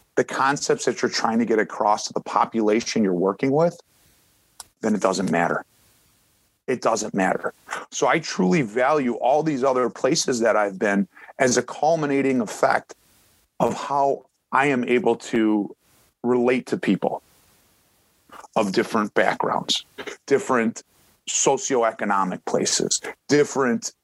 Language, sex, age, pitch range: English, male, 30-49, 115-140 Hz